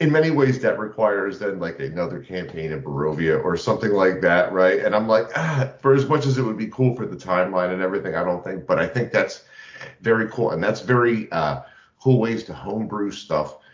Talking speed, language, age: 225 wpm, English, 40-59